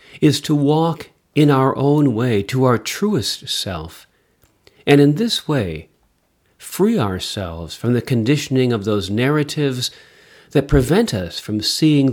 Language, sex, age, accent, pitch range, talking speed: English, male, 50-69, American, 100-150 Hz, 140 wpm